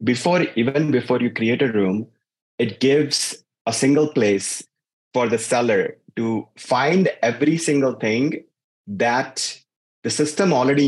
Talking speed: 130 wpm